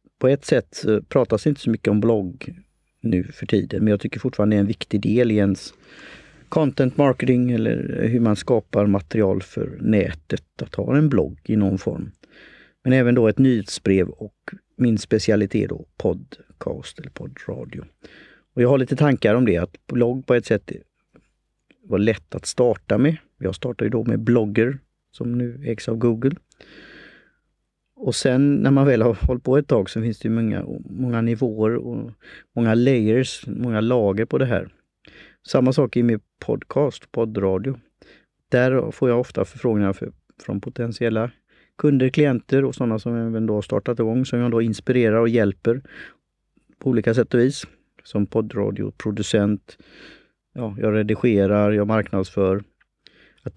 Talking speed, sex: 165 wpm, male